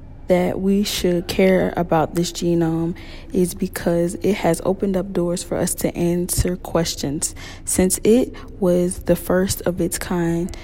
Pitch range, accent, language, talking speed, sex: 165-185 Hz, American, English, 150 wpm, female